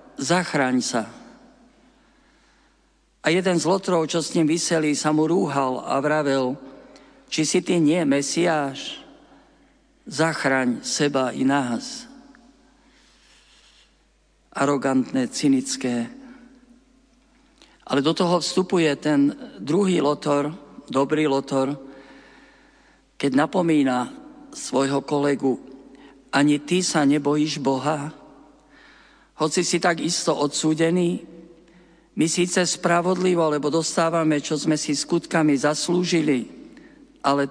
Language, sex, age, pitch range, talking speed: Slovak, male, 50-69, 140-220 Hz, 95 wpm